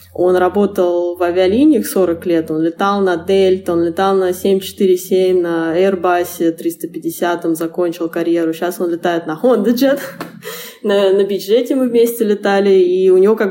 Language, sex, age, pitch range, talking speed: Russian, female, 20-39, 170-220 Hz, 145 wpm